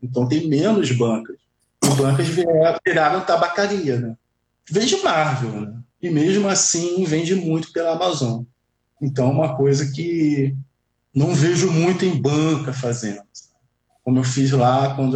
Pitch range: 130-175 Hz